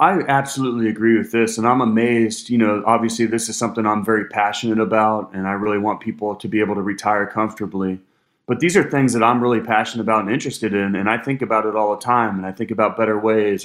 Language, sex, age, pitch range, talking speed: English, male, 30-49, 105-115 Hz, 240 wpm